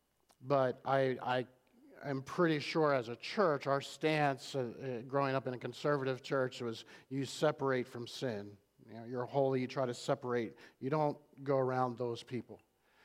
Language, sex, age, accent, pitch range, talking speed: English, male, 50-69, American, 125-150 Hz, 155 wpm